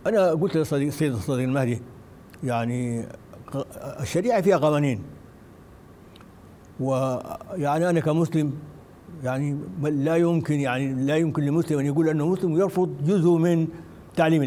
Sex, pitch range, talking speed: male, 140-170 Hz, 115 wpm